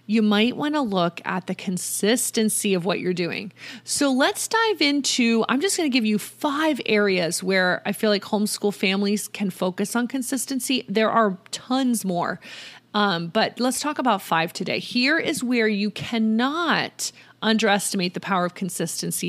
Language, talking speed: English, 170 wpm